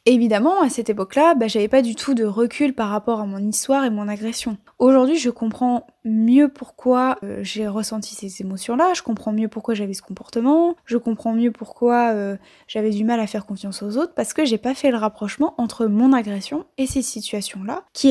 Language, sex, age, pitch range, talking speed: French, female, 10-29, 215-270 Hz, 210 wpm